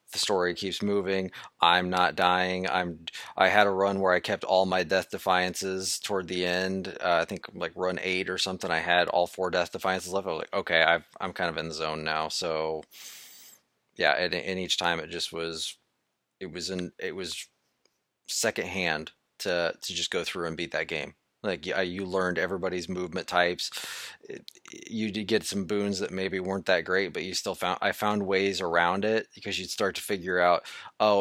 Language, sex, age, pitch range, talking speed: English, male, 30-49, 90-100 Hz, 205 wpm